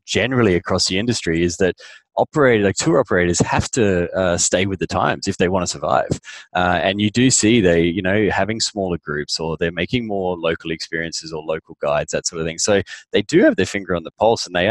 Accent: Australian